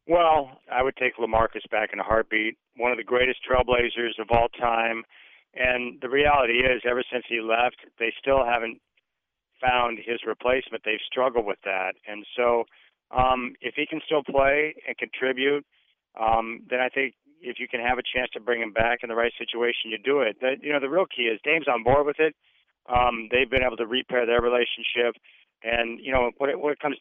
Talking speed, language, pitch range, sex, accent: 210 wpm, English, 115-130 Hz, male, American